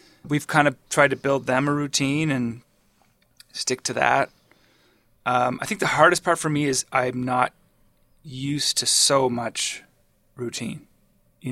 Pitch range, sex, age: 125-145 Hz, male, 20-39